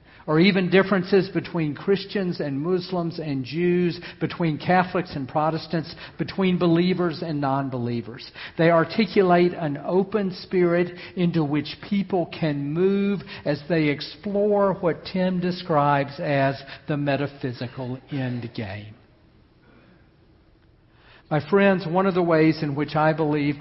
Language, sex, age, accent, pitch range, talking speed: English, male, 50-69, American, 145-180 Hz, 120 wpm